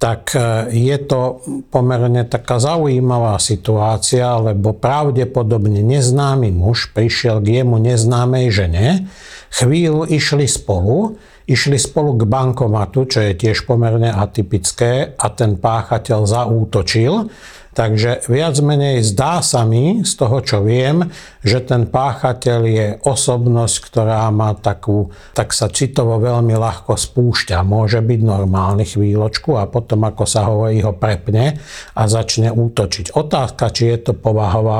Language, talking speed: Slovak, 130 wpm